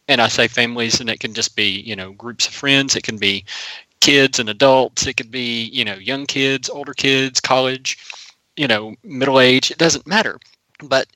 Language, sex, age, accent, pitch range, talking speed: English, male, 30-49, American, 110-135 Hz, 205 wpm